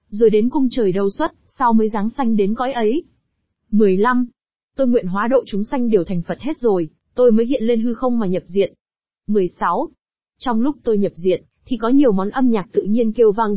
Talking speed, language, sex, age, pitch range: 220 wpm, Vietnamese, female, 20-39, 205-255 Hz